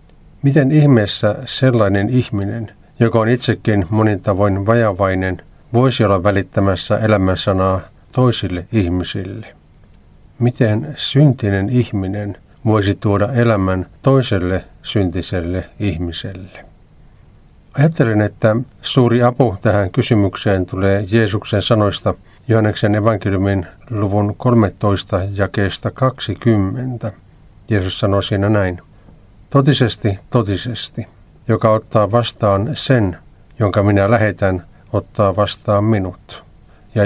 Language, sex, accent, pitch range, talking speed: Finnish, male, native, 95-115 Hz, 90 wpm